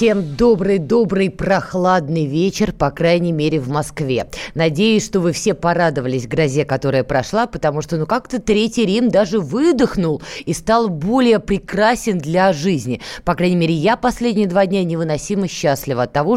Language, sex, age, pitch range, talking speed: Russian, female, 20-39, 170-235 Hz, 155 wpm